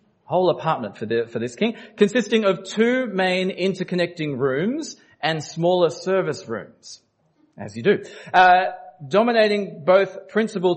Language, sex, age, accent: English, male, 40-59, Australian